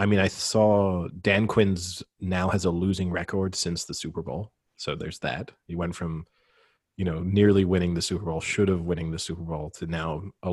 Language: English